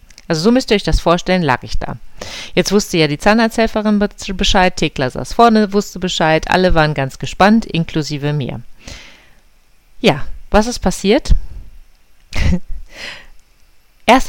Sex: female